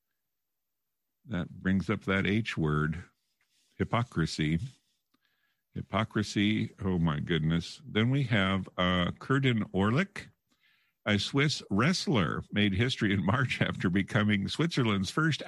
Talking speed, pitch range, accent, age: 110 wpm, 95-130 Hz, American, 50-69